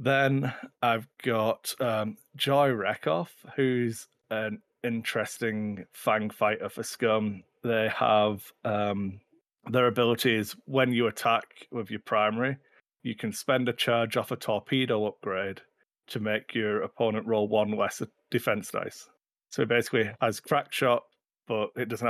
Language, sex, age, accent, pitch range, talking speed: English, male, 30-49, British, 105-120 Hz, 135 wpm